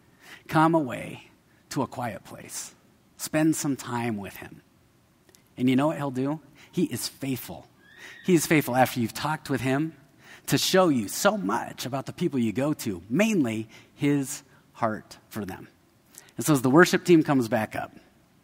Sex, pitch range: male, 120-145 Hz